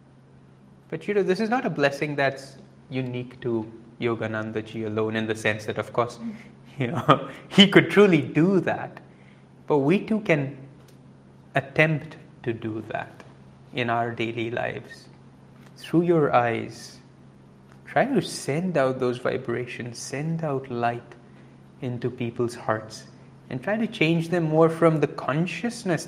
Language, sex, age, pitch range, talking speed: English, male, 30-49, 115-155 Hz, 145 wpm